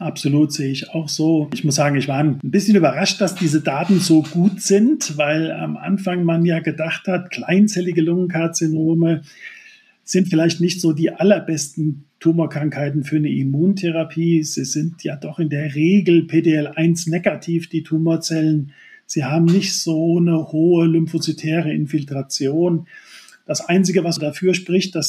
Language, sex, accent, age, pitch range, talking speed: German, male, German, 40-59, 150-170 Hz, 150 wpm